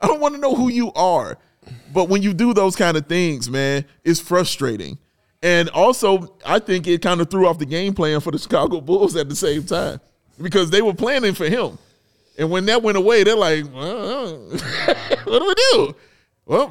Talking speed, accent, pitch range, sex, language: 210 wpm, American, 155-210 Hz, male, English